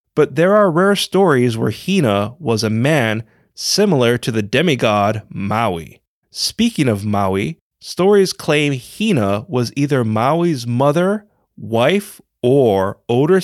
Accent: American